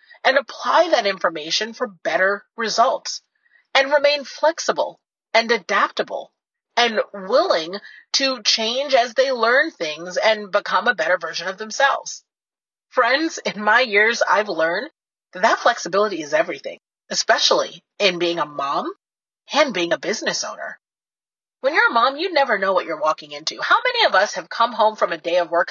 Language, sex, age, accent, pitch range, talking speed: English, female, 30-49, American, 200-300 Hz, 165 wpm